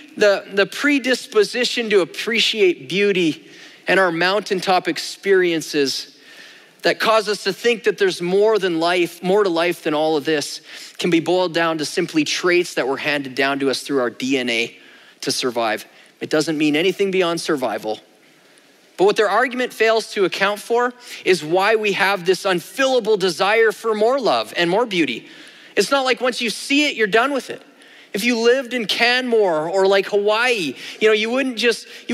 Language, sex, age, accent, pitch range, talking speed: English, male, 30-49, American, 190-255 Hz, 175 wpm